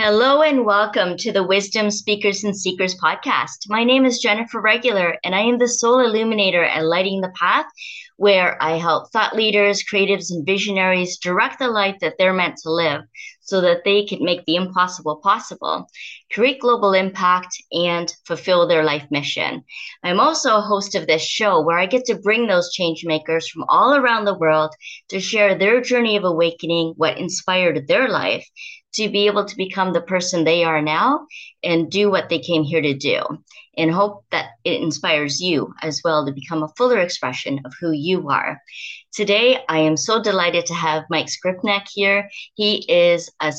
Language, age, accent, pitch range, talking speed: English, 30-49, American, 165-215 Hz, 185 wpm